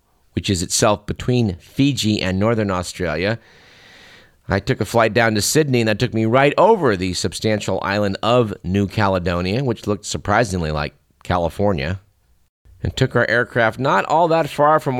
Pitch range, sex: 95-125 Hz, male